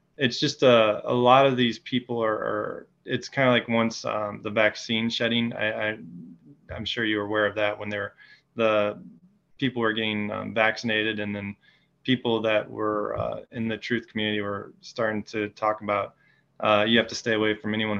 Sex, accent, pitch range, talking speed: male, American, 105-115 Hz, 195 wpm